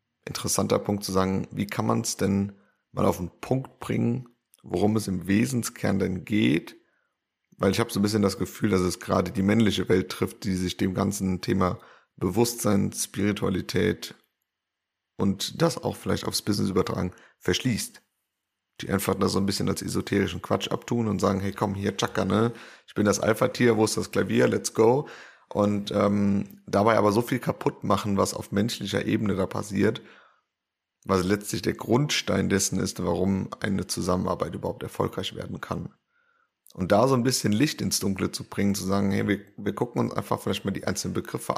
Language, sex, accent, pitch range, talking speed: German, male, German, 95-110 Hz, 185 wpm